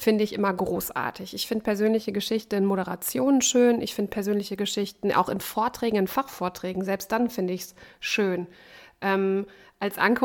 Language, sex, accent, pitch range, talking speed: German, female, German, 205-235 Hz, 170 wpm